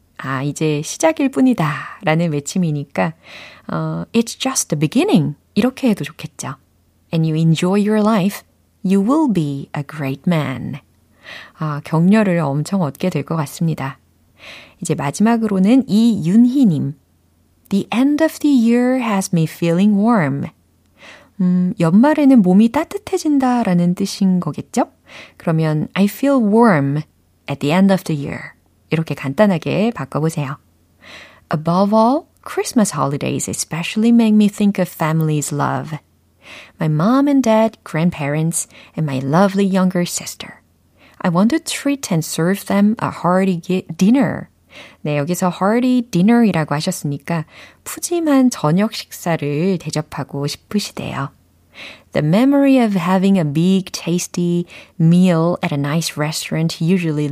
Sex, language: female, Korean